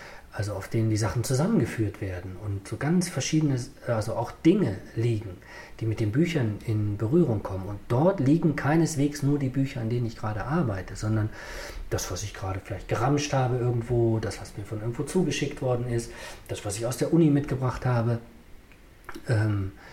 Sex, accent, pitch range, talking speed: male, German, 110-140 Hz, 180 wpm